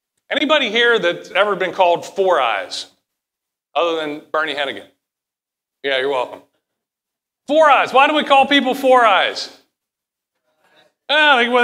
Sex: male